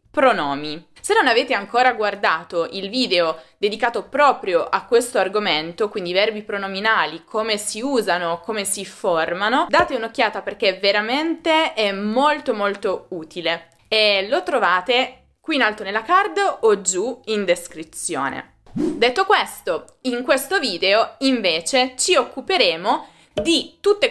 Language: Italian